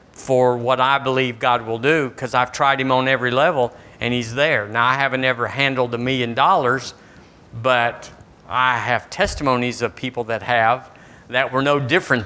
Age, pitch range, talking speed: 50-69, 115-140 Hz, 180 wpm